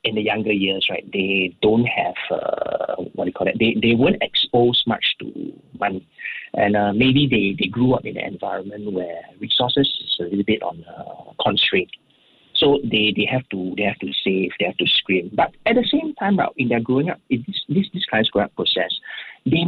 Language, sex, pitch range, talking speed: English, male, 110-180 Hz, 225 wpm